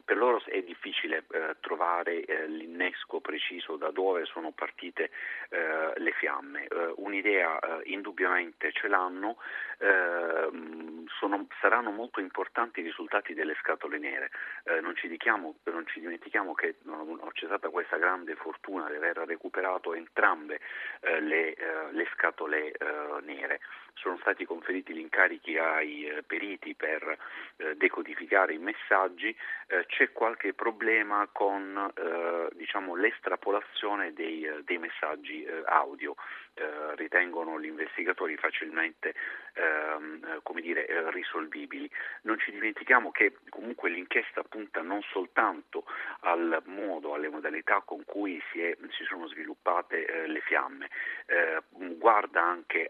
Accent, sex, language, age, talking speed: native, male, Italian, 40-59, 135 wpm